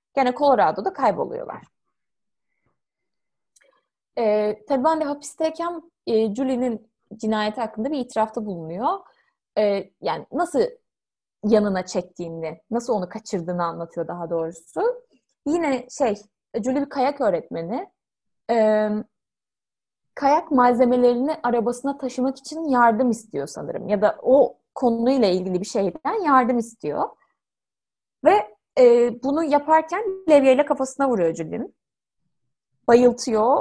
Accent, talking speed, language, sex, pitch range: native, 105 wpm, Turkish, female, 210-290 Hz